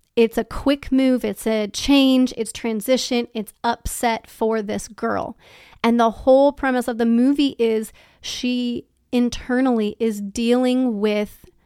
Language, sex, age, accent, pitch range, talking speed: English, female, 30-49, American, 215-245 Hz, 140 wpm